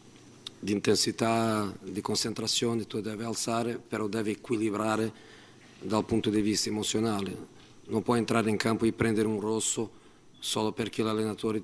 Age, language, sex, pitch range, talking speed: 40-59, Italian, male, 105-115 Hz, 140 wpm